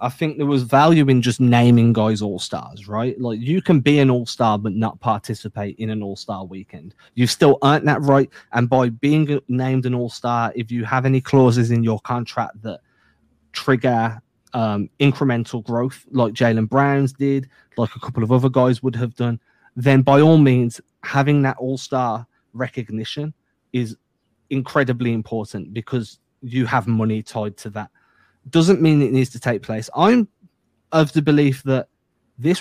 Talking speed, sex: 170 wpm, male